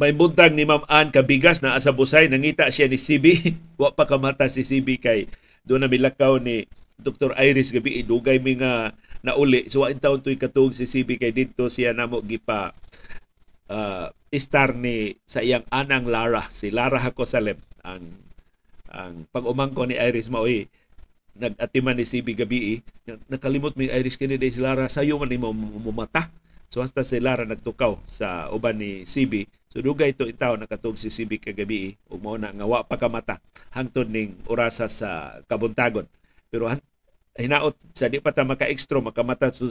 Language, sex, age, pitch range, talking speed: Filipino, male, 50-69, 115-140 Hz, 155 wpm